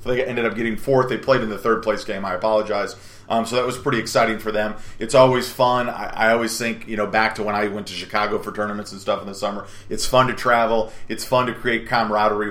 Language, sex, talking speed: English, male, 265 wpm